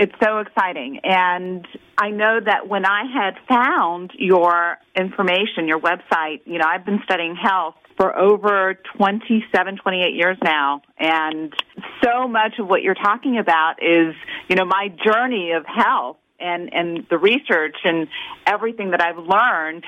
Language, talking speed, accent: English, 155 wpm, American